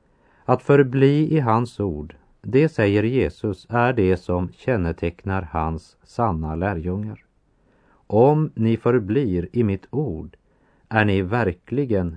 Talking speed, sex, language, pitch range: 120 wpm, male, Swedish, 90-120 Hz